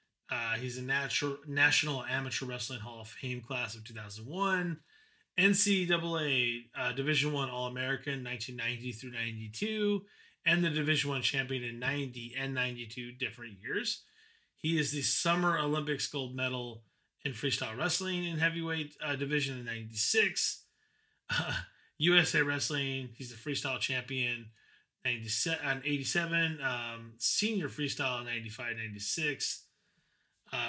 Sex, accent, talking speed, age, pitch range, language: male, American, 130 wpm, 30-49, 125-150 Hz, English